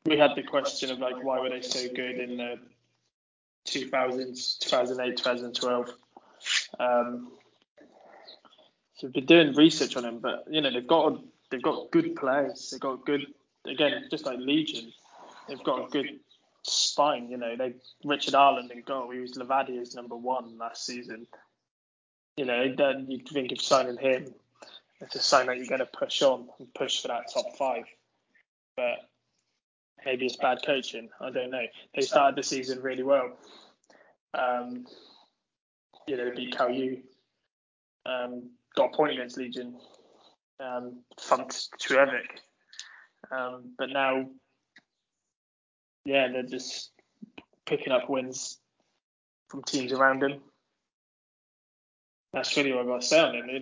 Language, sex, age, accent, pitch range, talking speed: English, male, 20-39, British, 125-135 Hz, 150 wpm